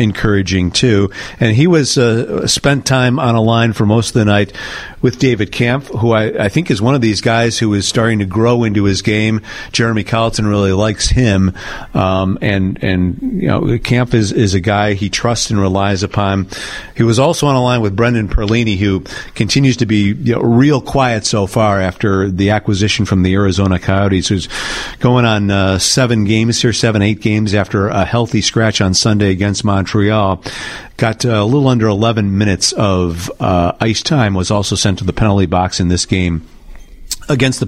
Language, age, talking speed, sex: English, 50-69, 195 wpm, male